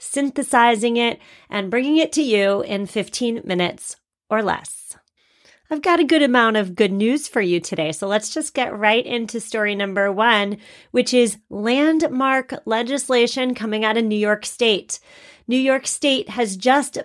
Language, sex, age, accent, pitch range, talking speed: English, female, 30-49, American, 195-250 Hz, 165 wpm